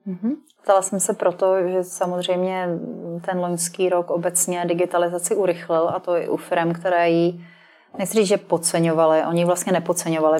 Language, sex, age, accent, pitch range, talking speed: Czech, female, 30-49, native, 170-180 Hz, 155 wpm